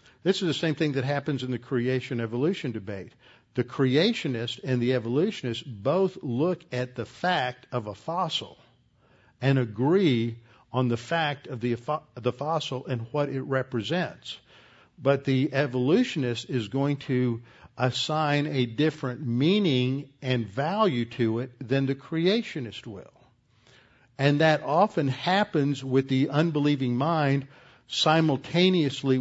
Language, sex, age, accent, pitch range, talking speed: English, male, 50-69, American, 120-150 Hz, 130 wpm